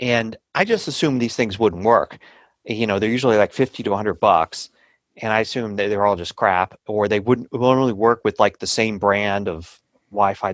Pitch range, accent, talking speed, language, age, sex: 100-135 Hz, American, 215 wpm, English, 40-59, male